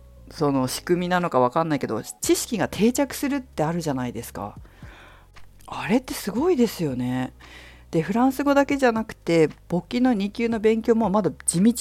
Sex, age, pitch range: female, 50-69, 140-220 Hz